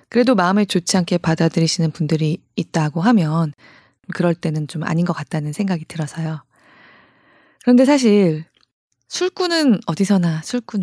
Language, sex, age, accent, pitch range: Korean, female, 20-39, native, 160-215 Hz